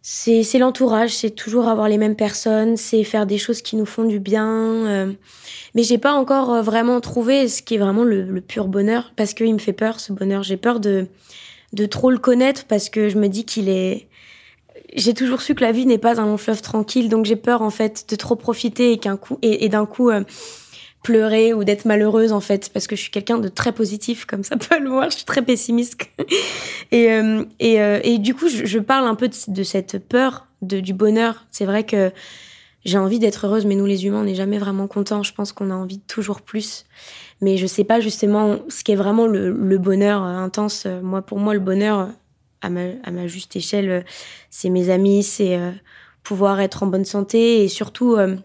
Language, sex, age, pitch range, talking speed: French, female, 20-39, 200-230 Hz, 225 wpm